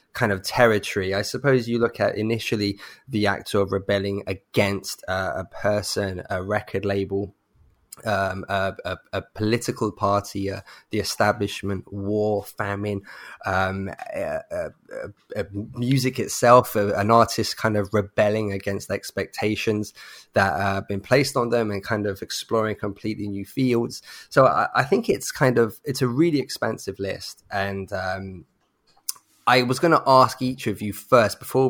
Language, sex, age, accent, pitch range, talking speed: English, male, 20-39, British, 100-120 Hz, 145 wpm